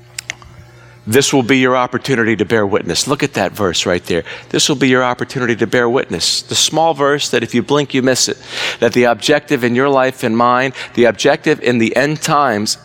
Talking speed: 215 wpm